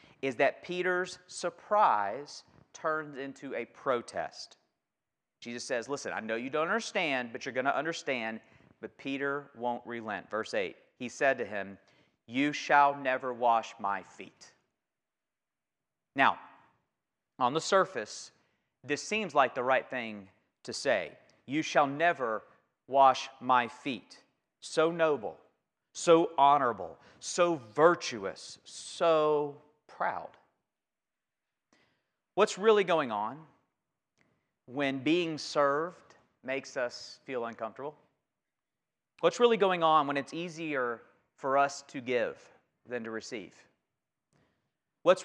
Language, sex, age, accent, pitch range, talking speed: English, male, 40-59, American, 130-170 Hz, 120 wpm